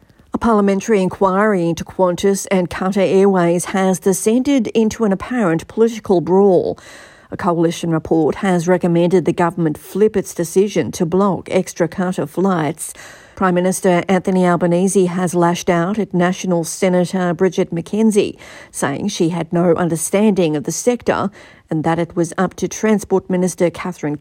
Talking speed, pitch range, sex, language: 145 wpm, 170-205 Hz, female, English